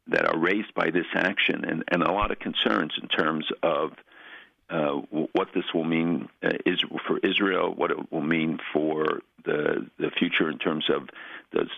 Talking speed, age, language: 190 wpm, 50-69, English